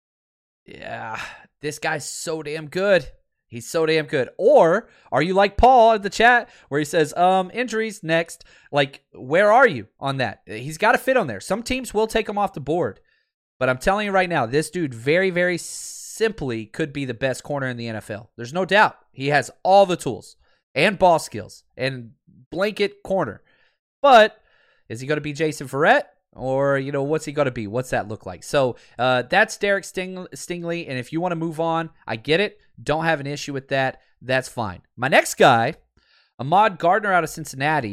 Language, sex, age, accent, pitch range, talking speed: English, male, 30-49, American, 125-175 Hz, 205 wpm